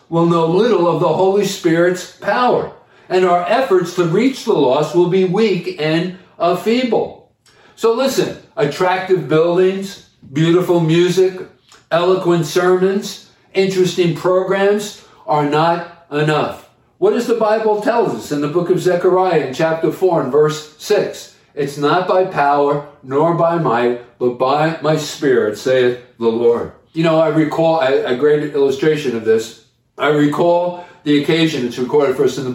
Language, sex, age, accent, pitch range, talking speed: English, male, 50-69, American, 145-180 Hz, 155 wpm